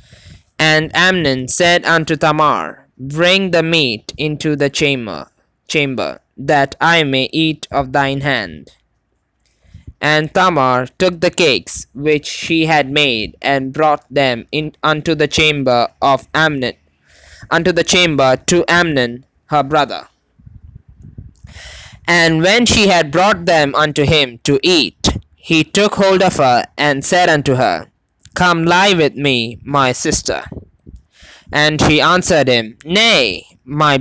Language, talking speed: English, 130 wpm